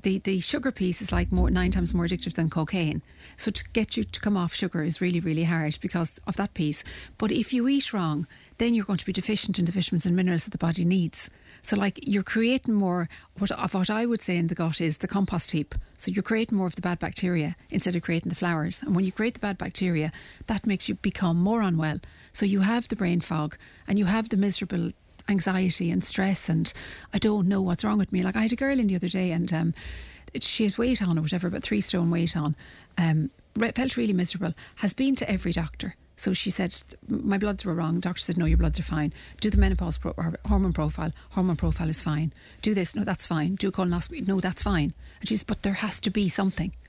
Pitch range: 170-205 Hz